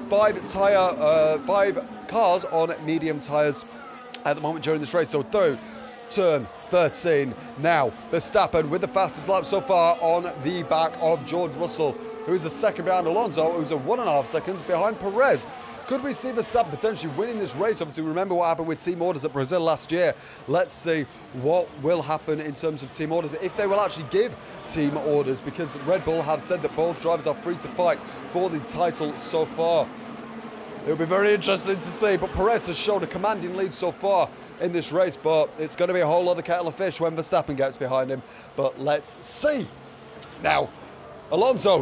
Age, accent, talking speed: 30-49, British, 200 wpm